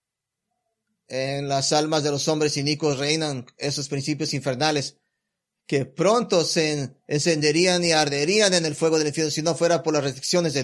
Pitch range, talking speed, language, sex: 140-175 Hz, 165 wpm, English, male